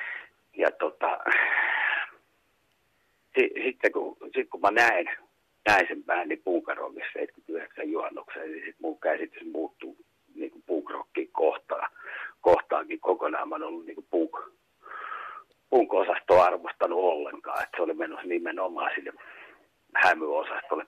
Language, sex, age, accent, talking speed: Finnish, male, 60-79, native, 120 wpm